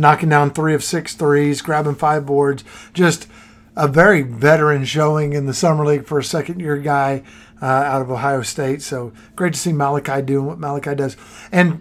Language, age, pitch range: English, 50-69, 140-175 Hz